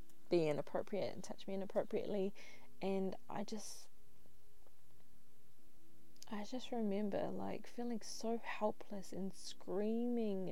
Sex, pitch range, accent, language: female, 180-210 Hz, Australian, English